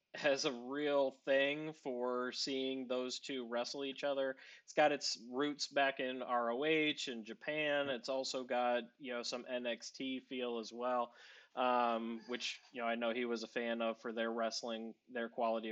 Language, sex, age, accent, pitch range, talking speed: English, male, 20-39, American, 125-145 Hz, 175 wpm